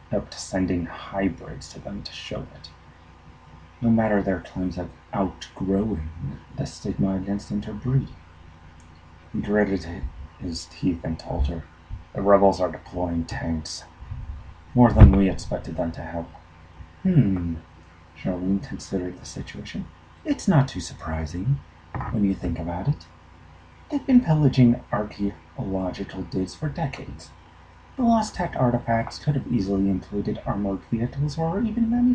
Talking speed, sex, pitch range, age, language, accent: 135 wpm, male, 80-110 Hz, 30-49, English, American